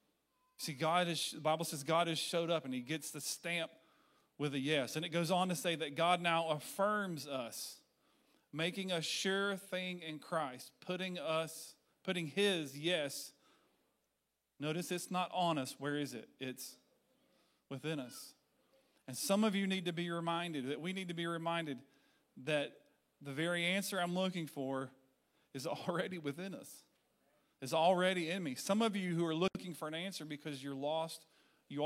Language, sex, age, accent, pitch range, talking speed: English, male, 40-59, American, 135-175 Hz, 175 wpm